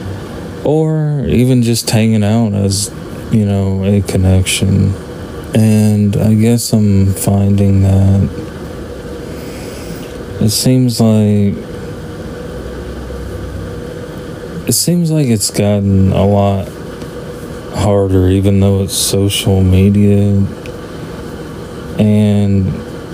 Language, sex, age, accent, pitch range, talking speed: English, male, 20-39, American, 95-105 Hz, 85 wpm